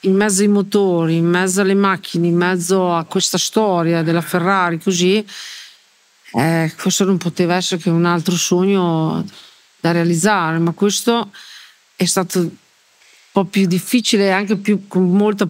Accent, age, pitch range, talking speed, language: native, 40-59, 175-195 Hz, 155 wpm, Italian